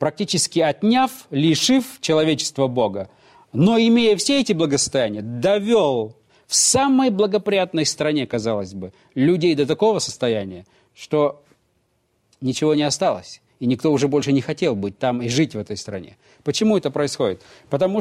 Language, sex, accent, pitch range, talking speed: Russian, male, native, 130-185 Hz, 140 wpm